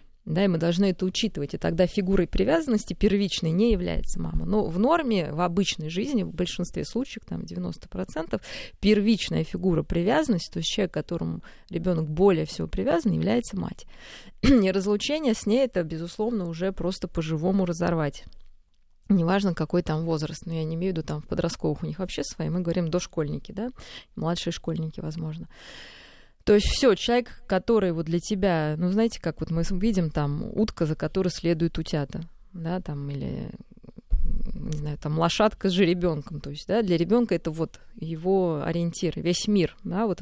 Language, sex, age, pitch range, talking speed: Russian, female, 20-39, 160-200 Hz, 175 wpm